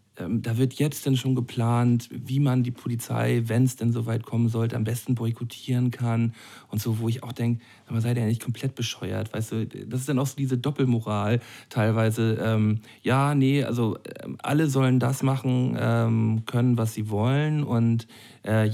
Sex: male